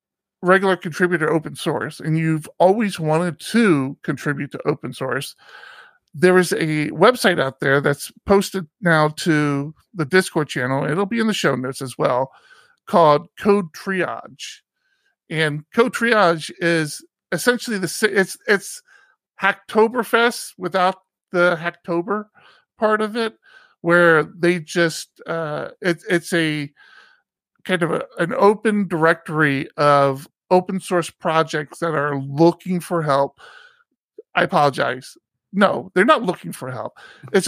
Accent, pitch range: American, 155-200 Hz